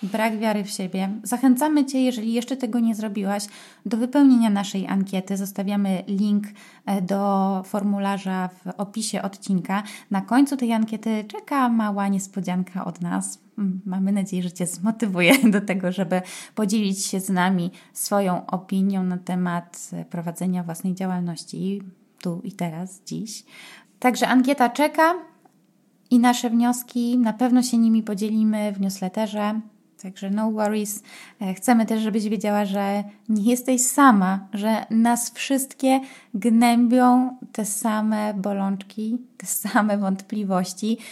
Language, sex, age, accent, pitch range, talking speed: Polish, female, 20-39, native, 190-245 Hz, 130 wpm